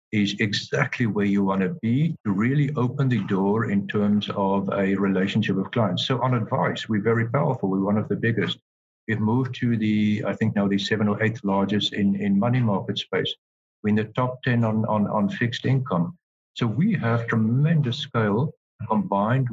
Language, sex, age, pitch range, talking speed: English, male, 50-69, 100-120 Hz, 190 wpm